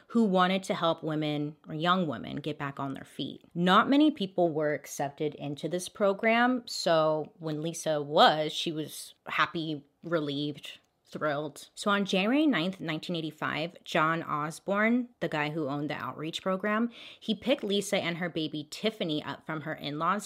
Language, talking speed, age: English, 165 wpm, 30-49